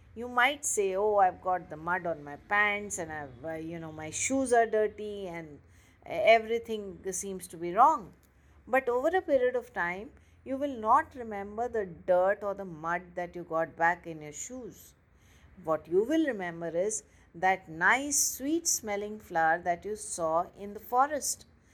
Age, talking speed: 50-69, 175 wpm